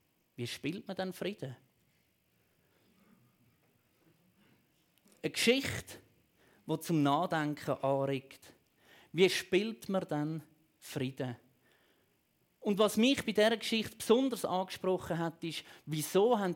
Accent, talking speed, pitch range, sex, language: Austrian, 100 wpm, 160-230 Hz, male, German